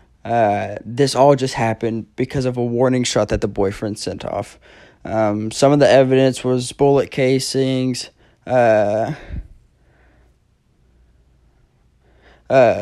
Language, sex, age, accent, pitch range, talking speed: English, male, 20-39, American, 115-140 Hz, 115 wpm